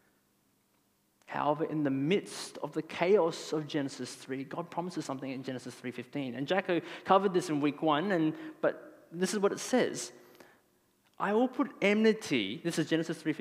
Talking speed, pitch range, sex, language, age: 170 wpm, 140-195 Hz, male, English, 20-39